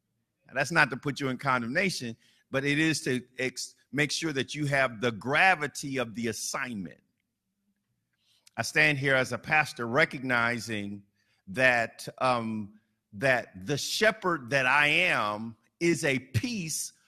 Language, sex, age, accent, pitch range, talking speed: English, male, 50-69, American, 120-160 Hz, 135 wpm